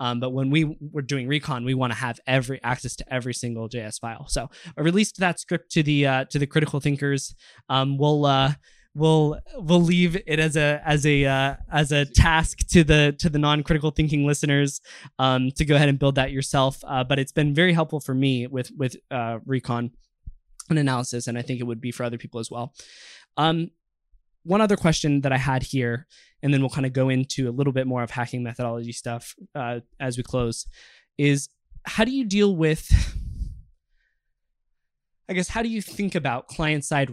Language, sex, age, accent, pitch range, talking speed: English, male, 20-39, American, 130-155 Hz, 205 wpm